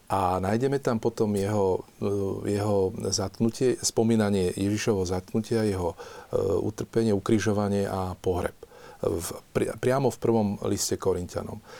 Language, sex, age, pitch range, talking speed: Slovak, male, 40-59, 95-115 Hz, 110 wpm